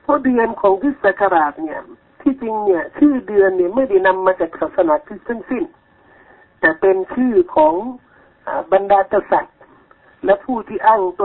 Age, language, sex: 60-79, Thai, male